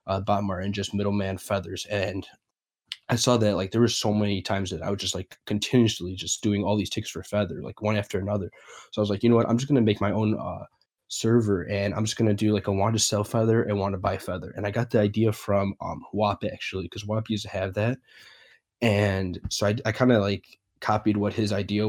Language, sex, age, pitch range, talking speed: English, male, 10-29, 100-110 Hz, 250 wpm